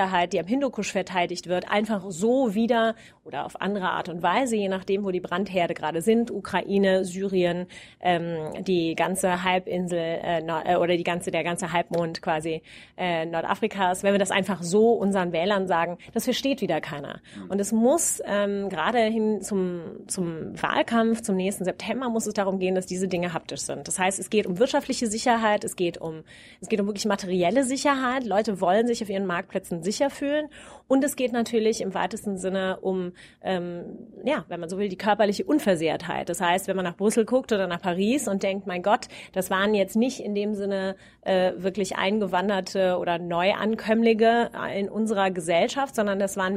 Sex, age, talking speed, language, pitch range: female, 30-49, 185 wpm, German, 180-225 Hz